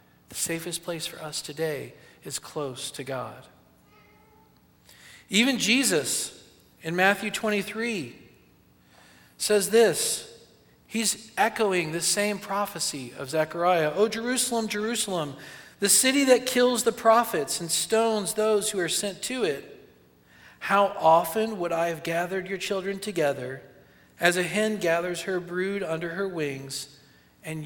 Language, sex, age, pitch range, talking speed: English, male, 40-59, 145-210 Hz, 130 wpm